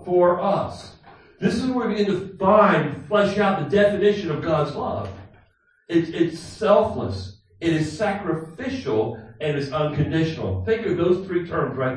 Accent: American